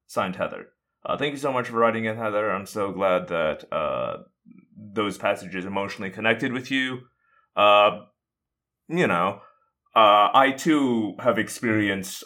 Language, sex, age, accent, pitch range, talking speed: English, male, 30-49, American, 85-120 Hz, 145 wpm